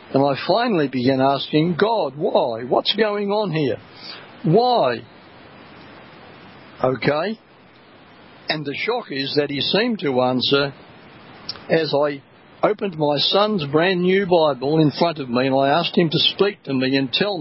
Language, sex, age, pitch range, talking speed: English, male, 60-79, 135-170 Hz, 150 wpm